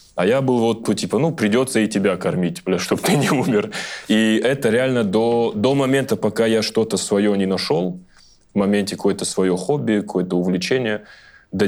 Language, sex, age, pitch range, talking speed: Russian, male, 20-39, 95-110 Hz, 175 wpm